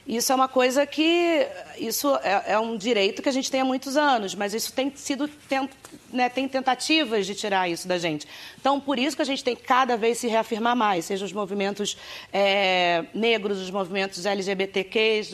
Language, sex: Portuguese, female